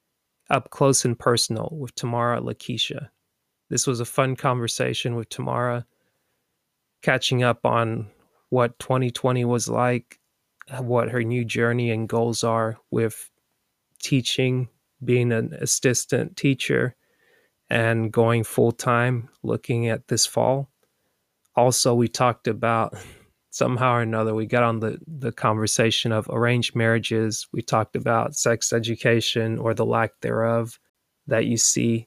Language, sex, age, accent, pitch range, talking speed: English, male, 30-49, American, 115-125 Hz, 130 wpm